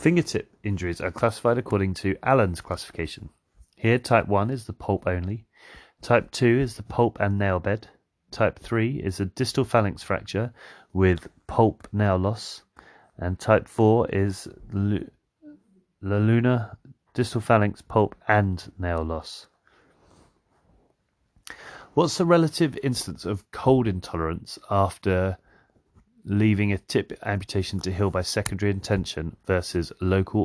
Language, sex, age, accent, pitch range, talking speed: English, male, 30-49, British, 90-115 Hz, 130 wpm